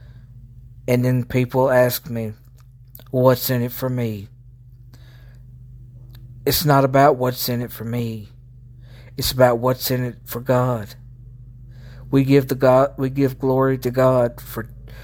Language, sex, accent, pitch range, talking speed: English, male, American, 120-130 Hz, 140 wpm